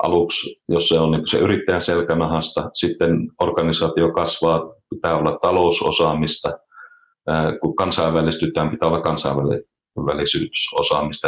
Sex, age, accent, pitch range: male, 40-59, native, 80-120 Hz